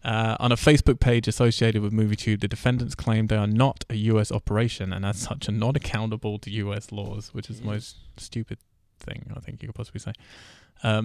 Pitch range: 100-115 Hz